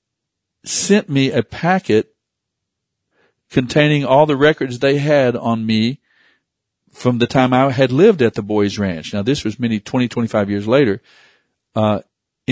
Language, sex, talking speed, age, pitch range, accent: English, male, 150 wpm, 50-69, 110-130 Hz, American